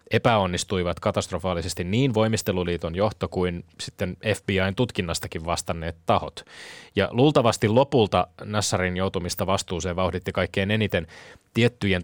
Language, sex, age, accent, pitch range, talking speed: Finnish, male, 30-49, native, 90-110 Hz, 105 wpm